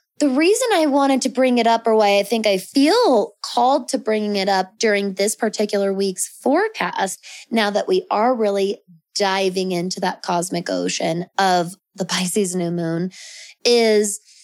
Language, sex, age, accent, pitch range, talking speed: English, female, 20-39, American, 185-225 Hz, 165 wpm